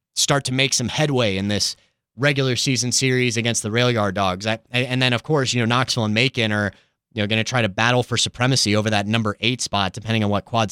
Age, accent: 30-49, American